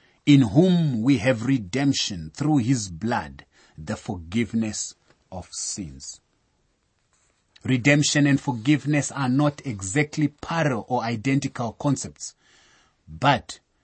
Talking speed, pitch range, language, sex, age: 100 wpm, 110-145 Hz, English, male, 30-49